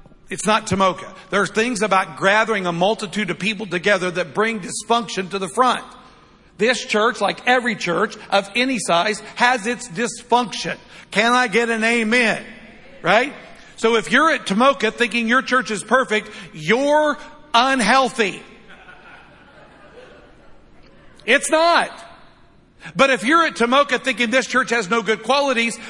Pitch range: 185-250 Hz